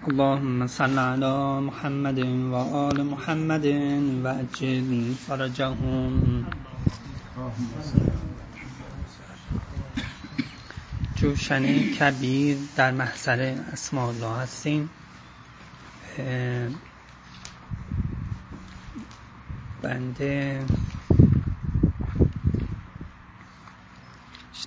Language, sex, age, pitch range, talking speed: Persian, male, 30-49, 120-150 Hz, 45 wpm